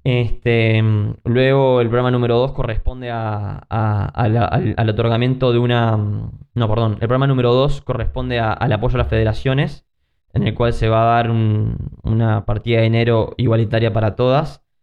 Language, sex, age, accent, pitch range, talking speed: Spanish, male, 10-29, Argentinian, 110-125 Hz, 180 wpm